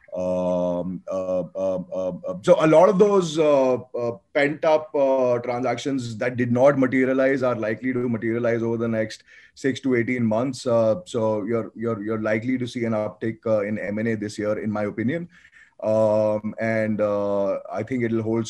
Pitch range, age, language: 110-125 Hz, 20-39, English